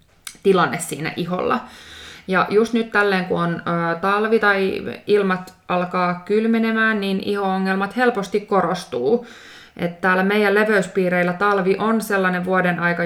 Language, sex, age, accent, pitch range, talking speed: Finnish, female, 20-39, native, 180-205 Hz, 130 wpm